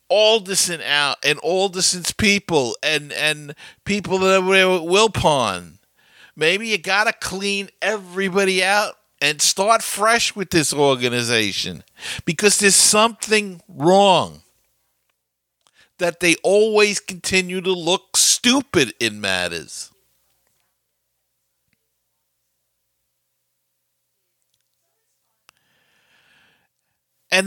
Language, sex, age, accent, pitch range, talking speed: English, male, 50-69, American, 170-235 Hz, 85 wpm